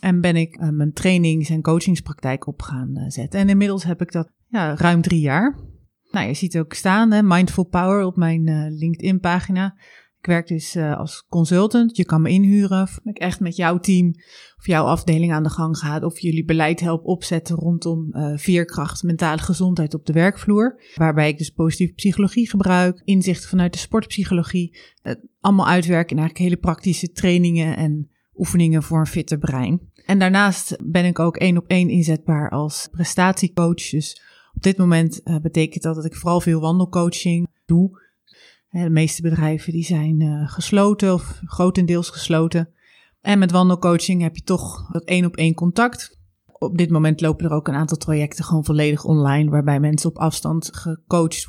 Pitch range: 160-185 Hz